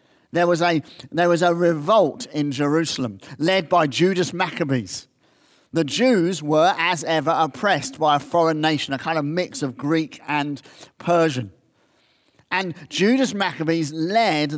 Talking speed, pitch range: 135 wpm, 150-185 Hz